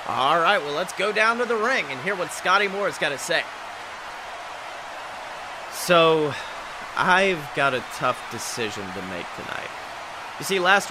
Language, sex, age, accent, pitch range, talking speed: English, male, 30-49, American, 160-210 Hz, 165 wpm